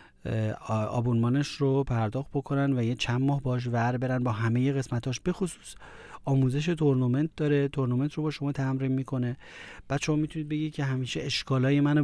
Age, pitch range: 30-49, 125-145 Hz